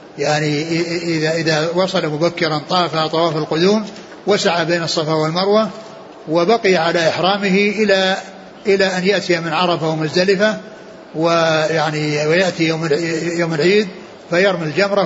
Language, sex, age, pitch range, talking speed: Arabic, male, 60-79, 150-175 Hz, 110 wpm